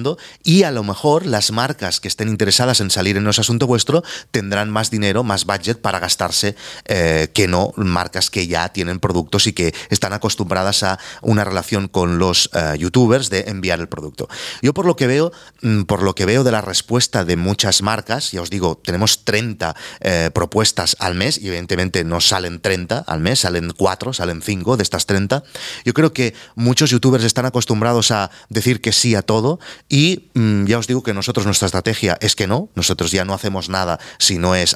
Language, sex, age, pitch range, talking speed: Spanish, male, 30-49, 95-120 Hz, 200 wpm